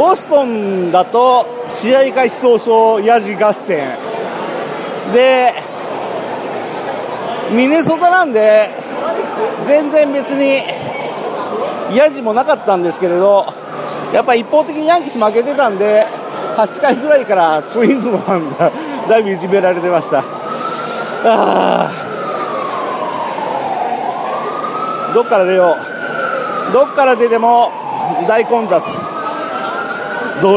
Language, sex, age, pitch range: Japanese, male, 40-59, 200-290 Hz